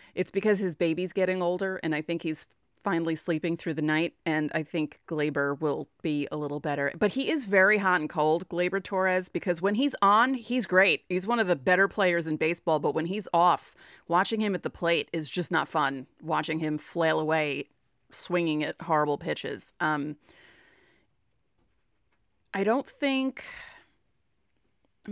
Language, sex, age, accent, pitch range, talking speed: English, female, 30-49, American, 160-220 Hz, 175 wpm